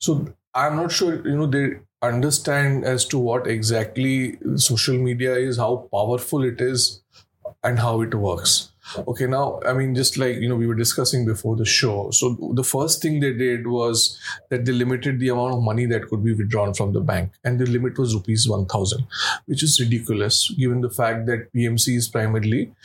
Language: English